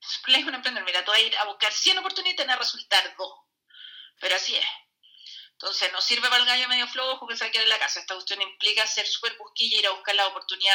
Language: Spanish